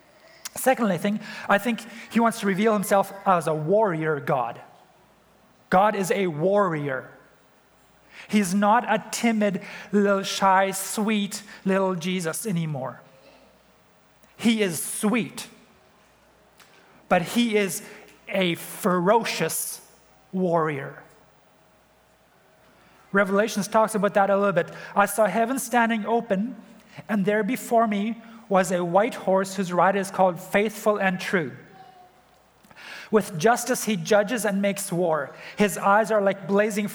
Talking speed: 120 wpm